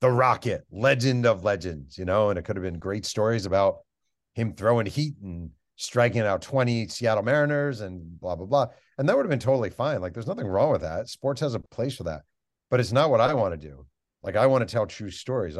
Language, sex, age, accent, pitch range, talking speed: English, male, 40-59, American, 85-115 Hz, 240 wpm